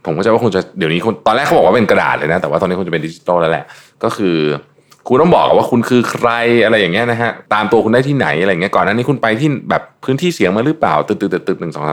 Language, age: Thai, 20-39